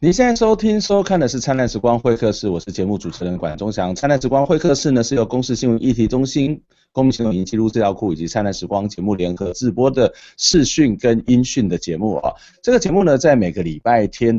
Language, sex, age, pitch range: Chinese, male, 30-49, 105-145 Hz